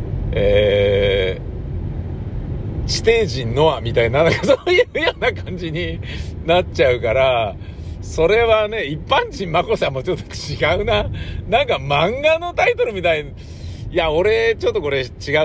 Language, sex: Japanese, male